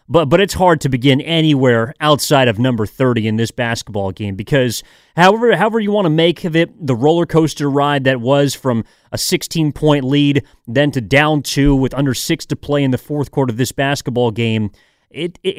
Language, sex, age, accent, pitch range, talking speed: English, male, 30-49, American, 125-175 Hz, 205 wpm